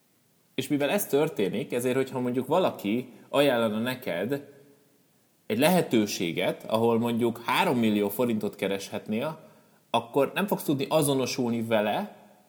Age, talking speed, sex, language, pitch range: 30-49, 115 wpm, male, Hungarian, 115-145 Hz